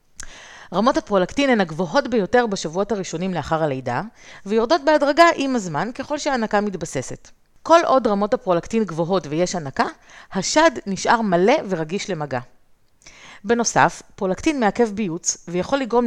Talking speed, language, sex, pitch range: 125 wpm, Hebrew, female, 170-235 Hz